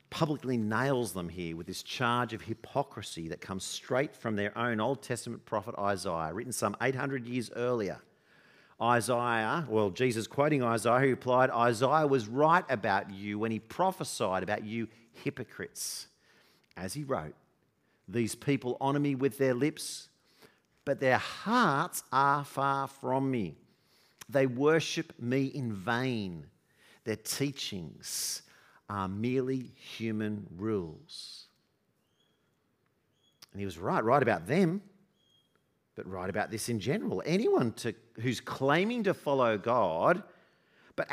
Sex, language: male, English